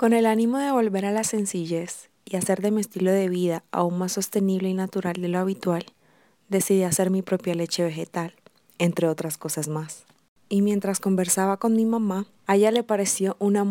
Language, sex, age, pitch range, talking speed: Spanish, female, 20-39, 180-215 Hz, 195 wpm